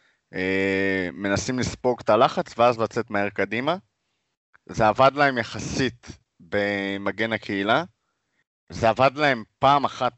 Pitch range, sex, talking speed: 100-130 Hz, male, 120 wpm